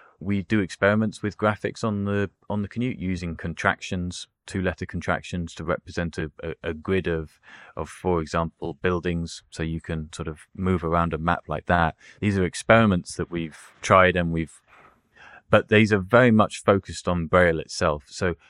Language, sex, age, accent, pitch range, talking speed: English, male, 20-39, British, 80-100 Hz, 170 wpm